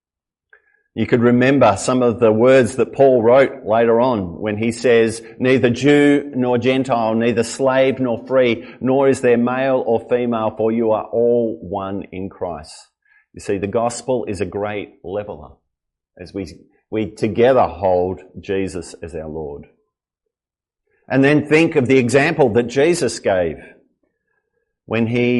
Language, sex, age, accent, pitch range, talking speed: English, male, 50-69, Australian, 105-130 Hz, 150 wpm